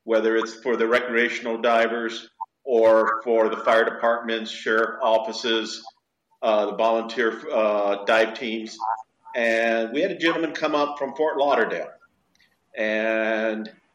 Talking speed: 130 wpm